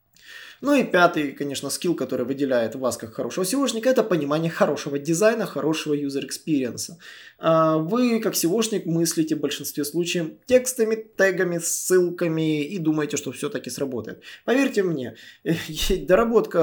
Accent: native